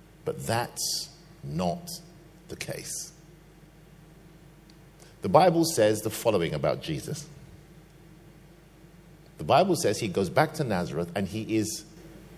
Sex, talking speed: male, 110 wpm